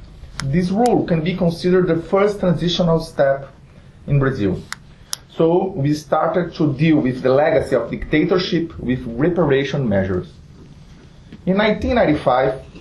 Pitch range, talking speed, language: 135-170 Hz, 120 wpm, English